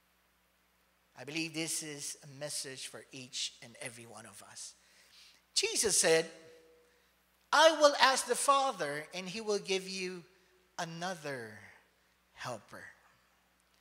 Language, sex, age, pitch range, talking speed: English, male, 50-69, 150-210 Hz, 115 wpm